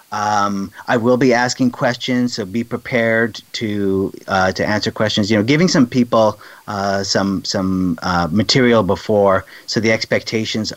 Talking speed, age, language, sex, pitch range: 155 wpm, 30-49, English, male, 95-115 Hz